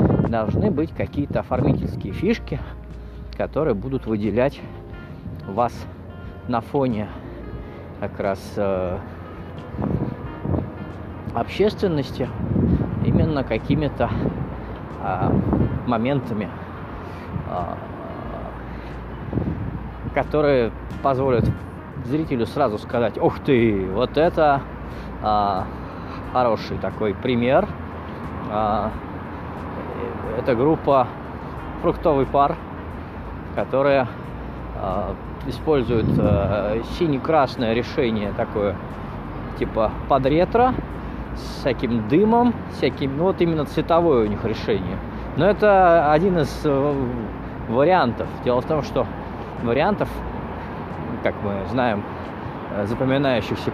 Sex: male